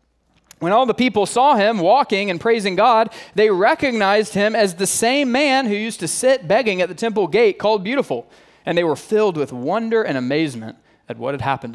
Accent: American